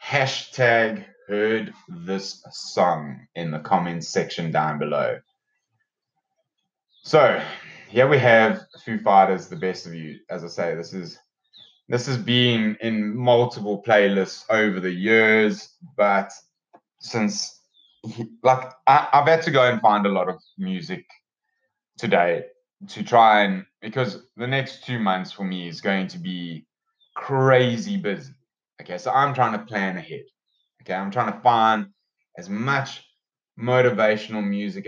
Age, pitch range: 20-39, 105-145 Hz